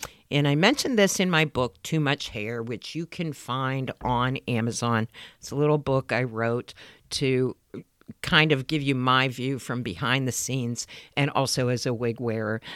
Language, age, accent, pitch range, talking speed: English, 50-69, American, 120-155 Hz, 185 wpm